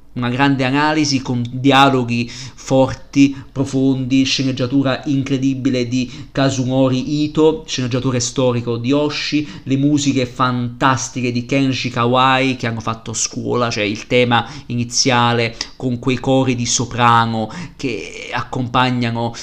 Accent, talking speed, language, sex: native, 115 wpm, Italian, male